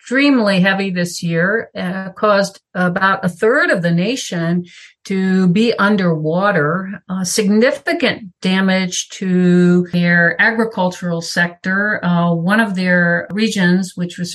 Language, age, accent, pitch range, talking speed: English, 50-69, American, 170-195 Hz, 120 wpm